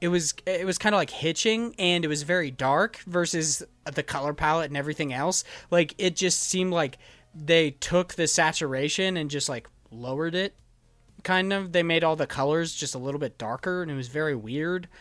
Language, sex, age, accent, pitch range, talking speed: English, male, 20-39, American, 145-185 Hz, 205 wpm